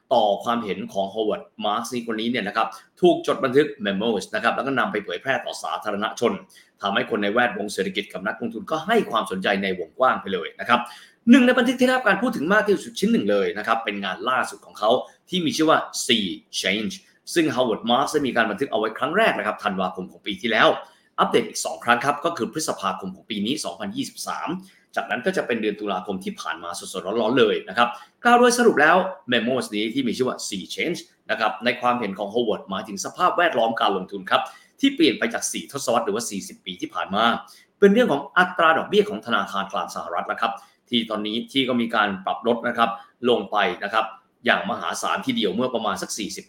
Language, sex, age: Thai, male, 20-39